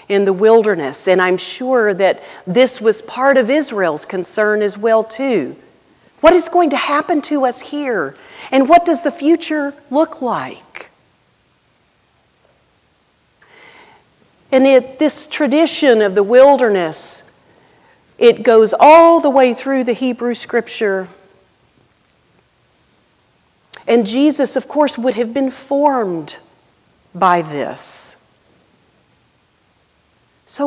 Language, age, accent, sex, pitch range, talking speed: English, 40-59, American, female, 185-275 Hz, 110 wpm